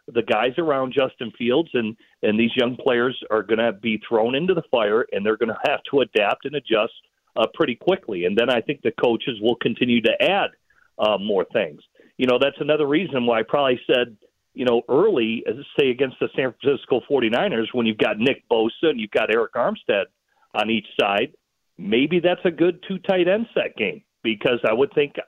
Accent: American